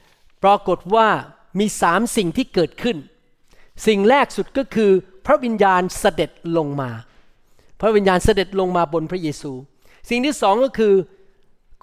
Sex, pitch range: male, 170-220 Hz